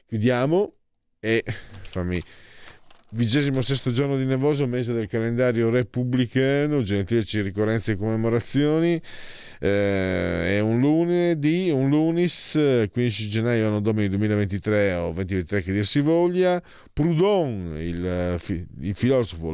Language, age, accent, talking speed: Italian, 50-69, native, 110 wpm